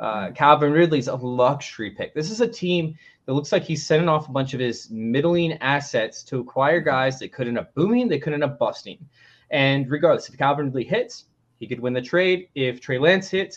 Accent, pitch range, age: American, 120-150 Hz, 20-39